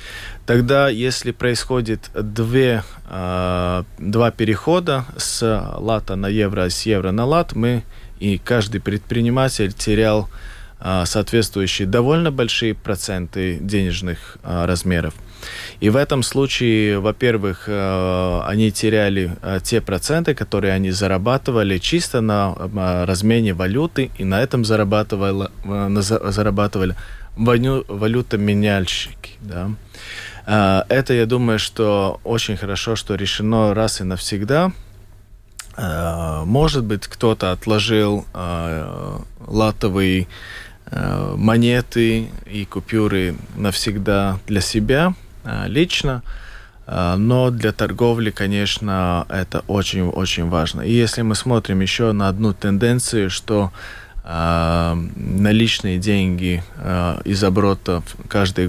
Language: Russian